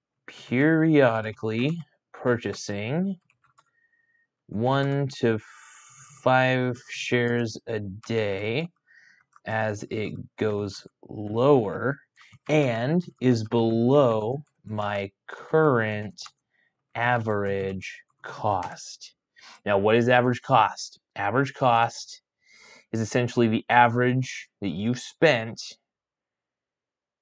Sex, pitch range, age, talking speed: male, 110-135 Hz, 30-49, 75 wpm